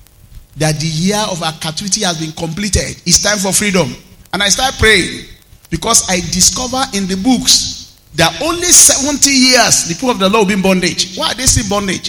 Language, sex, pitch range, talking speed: English, male, 130-190 Hz, 200 wpm